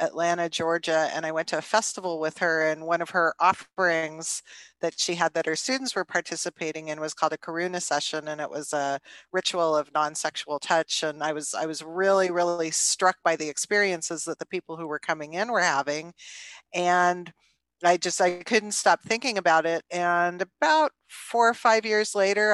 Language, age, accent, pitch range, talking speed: English, 40-59, American, 155-185 Hz, 195 wpm